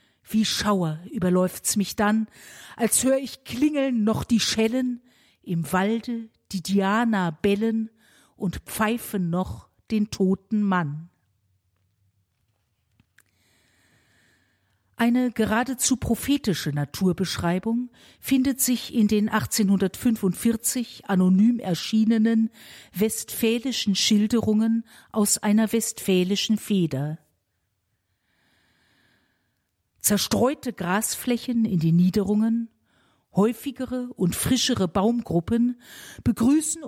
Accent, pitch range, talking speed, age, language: German, 185-245 Hz, 80 wpm, 50-69, German